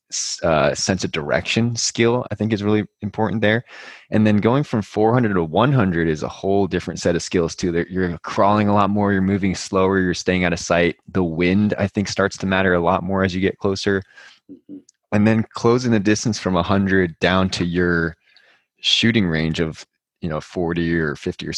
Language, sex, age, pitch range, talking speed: English, male, 20-39, 90-110 Hz, 200 wpm